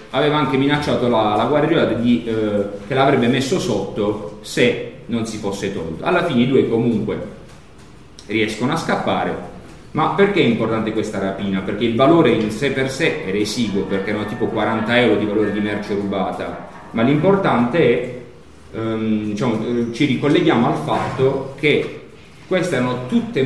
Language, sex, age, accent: Italian, male, 40-59, native